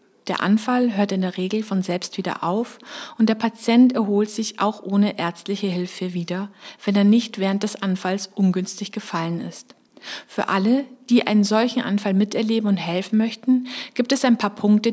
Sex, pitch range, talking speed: female, 195-235 Hz, 175 wpm